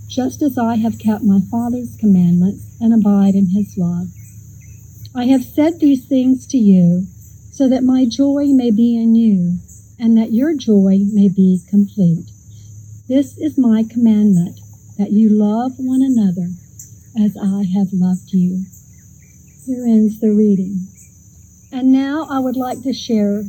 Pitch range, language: 195-255 Hz, English